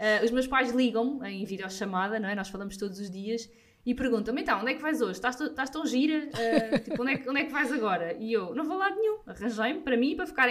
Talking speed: 280 wpm